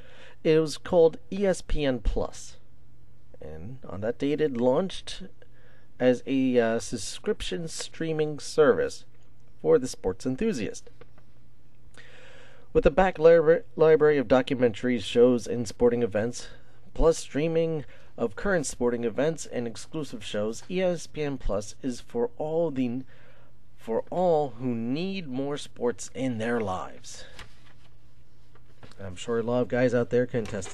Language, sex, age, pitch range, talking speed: English, male, 40-59, 115-150 Hz, 125 wpm